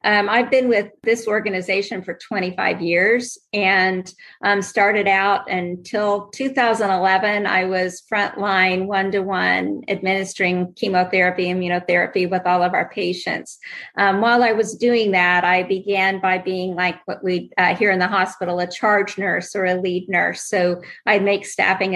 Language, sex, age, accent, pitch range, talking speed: English, female, 50-69, American, 185-210 Hz, 155 wpm